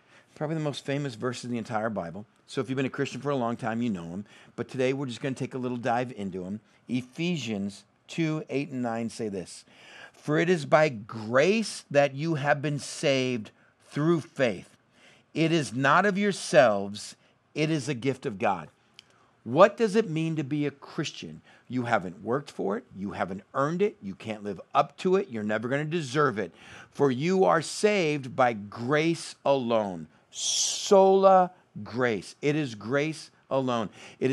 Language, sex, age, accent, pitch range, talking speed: English, male, 50-69, American, 120-165 Hz, 185 wpm